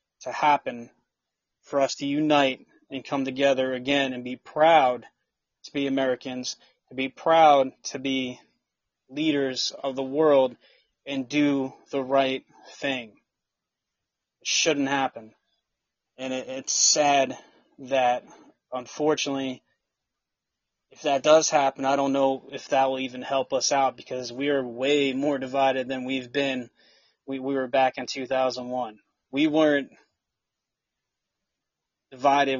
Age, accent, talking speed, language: 20-39, American, 130 wpm, English